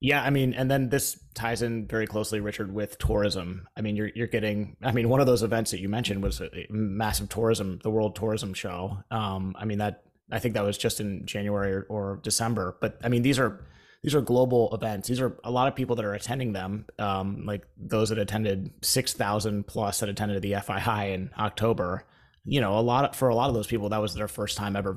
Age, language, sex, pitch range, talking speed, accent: 30-49, English, male, 100-120 Hz, 235 wpm, American